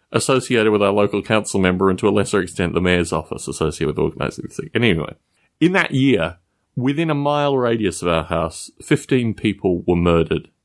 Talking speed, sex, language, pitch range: 190 wpm, male, English, 85-135 Hz